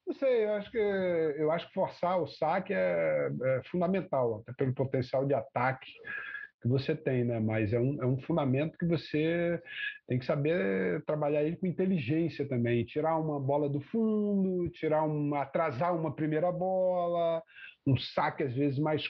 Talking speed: 175 wpm